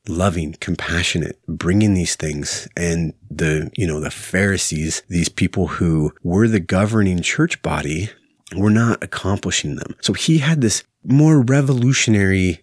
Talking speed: 140 wpm